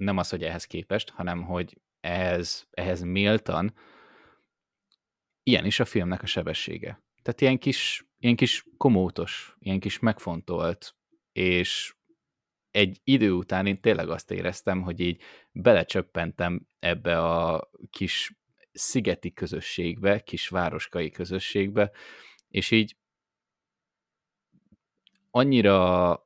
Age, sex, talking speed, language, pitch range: 20-39, male, 105 wpm, Hungarian, 90-105 Hz